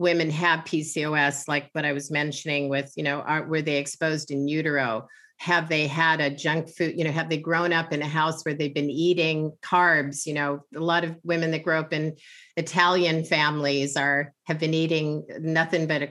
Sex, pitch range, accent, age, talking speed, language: female, 150-175 Hz, American, 50-69, 210 wpm, English